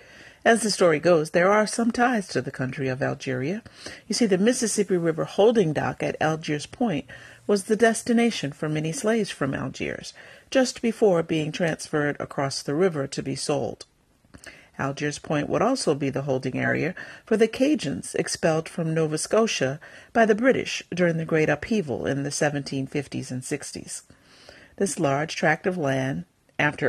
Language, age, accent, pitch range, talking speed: English, 50-69, American, 145-200 Hz, 165 wpm